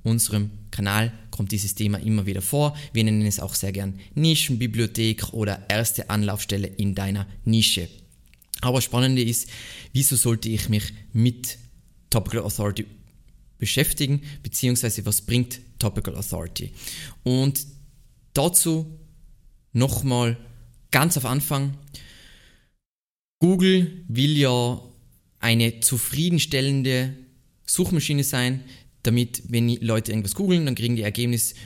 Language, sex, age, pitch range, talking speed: German, male, 20-39, 105-130 Hz, 115 wpm